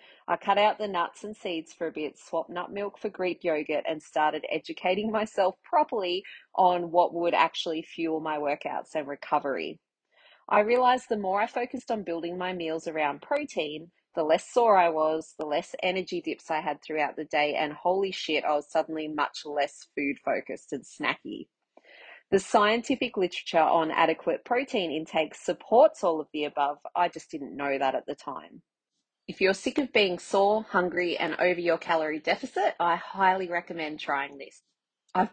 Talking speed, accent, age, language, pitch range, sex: 180 wpm, Australian, 30-49, English, 160-205 Hz, female